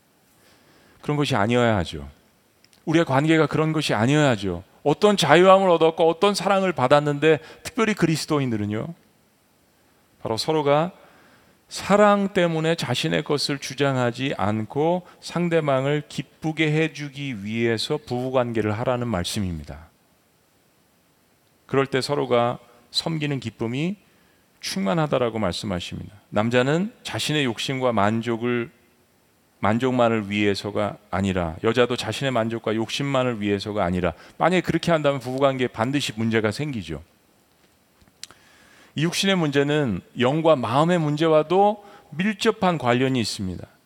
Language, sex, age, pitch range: Korean, male, 40-59, 115-160 Hz